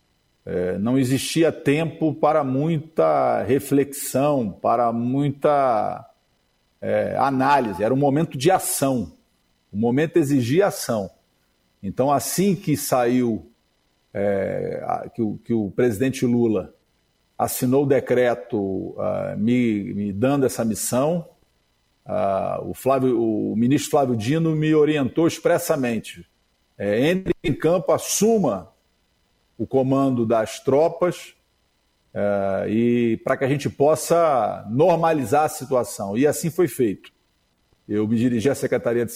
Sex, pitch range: male, 105-145 Hz